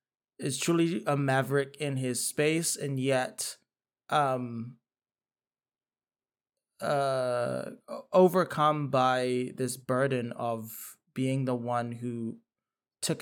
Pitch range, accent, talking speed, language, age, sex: 120-150 Hz, American, 95 wpm, English, 20-39, male